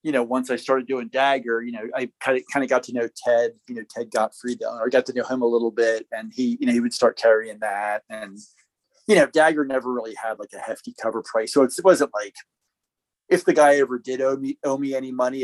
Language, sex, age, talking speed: English, male, 30-49, 260 wpm